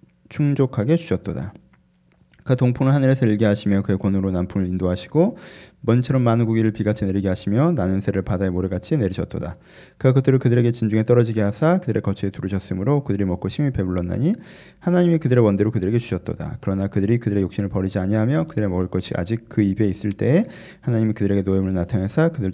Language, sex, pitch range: Korean, male, 100-130 Hz